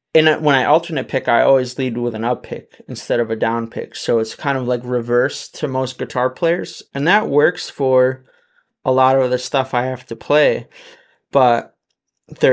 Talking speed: 200 wpm